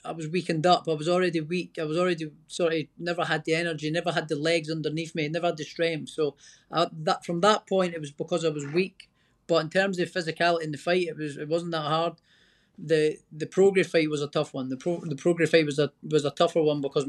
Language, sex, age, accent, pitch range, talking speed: English, male, 30-49, British, 150-170 Hz, 255 wpm